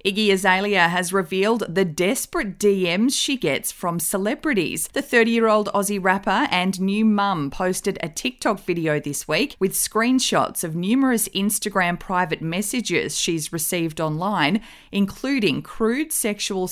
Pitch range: 175-220 Hz